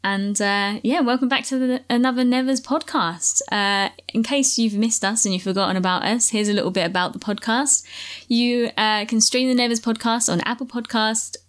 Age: 20-39